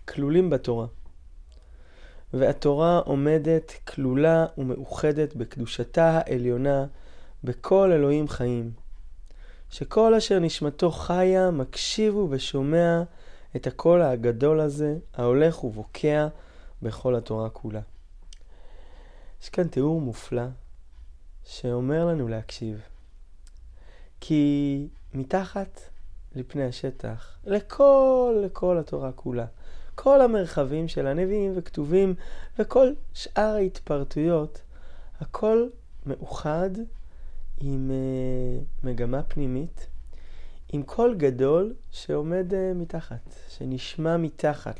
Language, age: Hebrew, 20-39